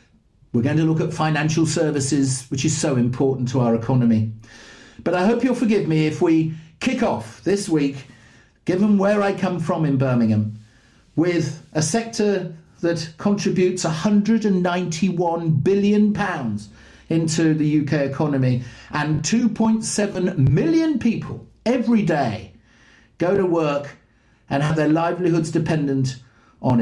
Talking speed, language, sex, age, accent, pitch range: 130 wpm, English, male, 50-69, British, 125-180 Hz